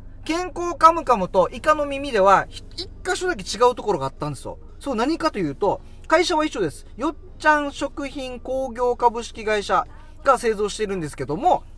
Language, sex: Japanese, male